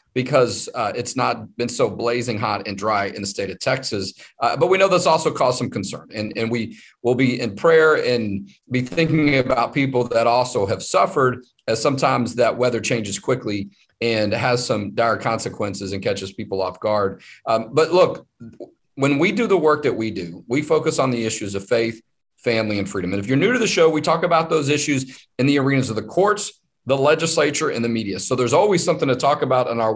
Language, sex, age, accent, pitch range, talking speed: English, male, 40-59, American, 115-160 Hz, 220 wpm